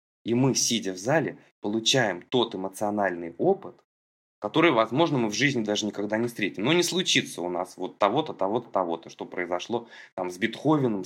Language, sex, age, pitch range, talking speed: Russian, male, 20-39, 90-120 Hz, 175 wpm